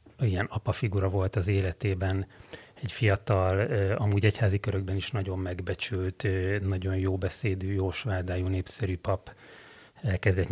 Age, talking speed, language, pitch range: 30-49, 125 wpm, Hungarian, 95-110 Hz